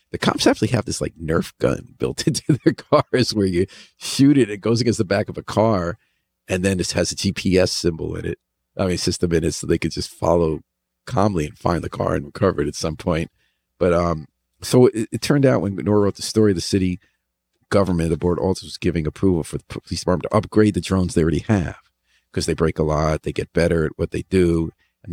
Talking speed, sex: 235 wpm, male